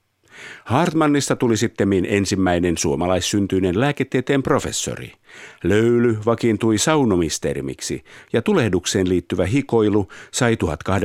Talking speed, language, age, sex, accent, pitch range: 80 wpm, Finnish, 50-69, male, native, 90-120 Hz